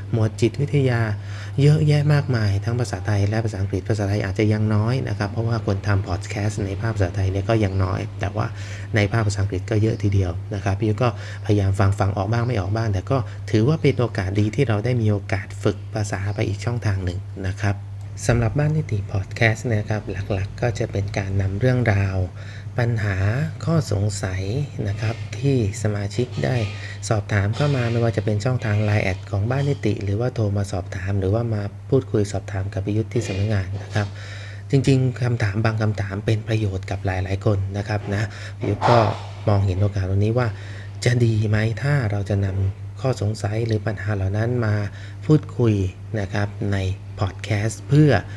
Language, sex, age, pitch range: English, male, 20-39, 100-115 Hz